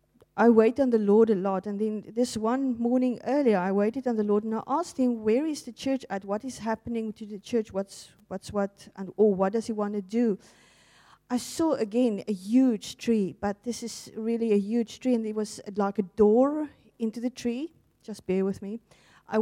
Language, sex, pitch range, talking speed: English, female, 210-245 Hz, 220 wpm